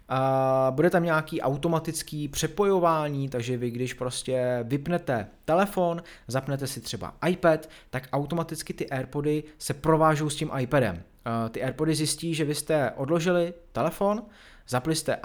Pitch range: 115-155 Hz